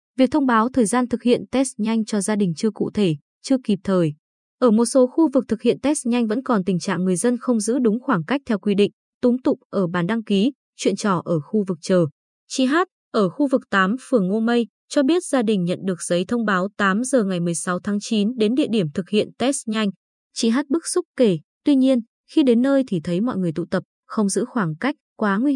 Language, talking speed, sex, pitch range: Vietnamese, 250 wpm, female, 190-250 Hz